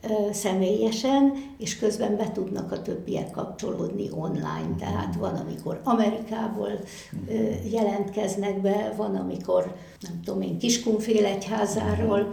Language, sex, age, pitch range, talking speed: Hungarian, female, 60-79, 195-220 Hz, 100 wpm